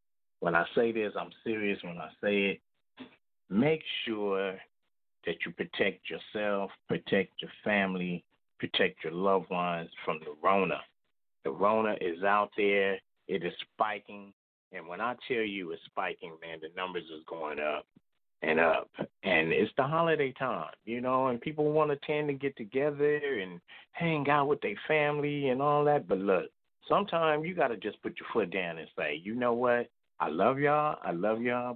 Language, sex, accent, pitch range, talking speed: English, male, American, 95-140 Hz, 180 wpm